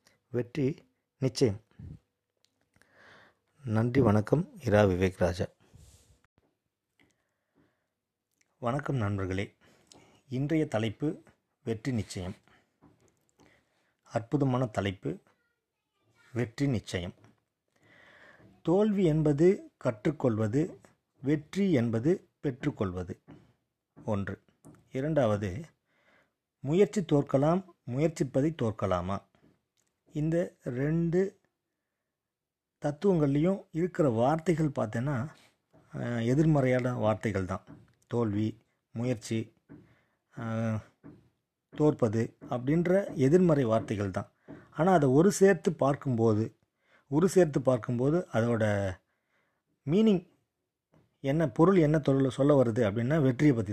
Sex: male